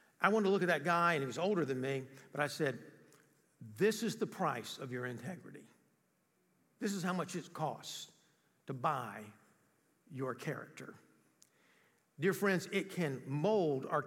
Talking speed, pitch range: 165 wpm, 155-215 Hz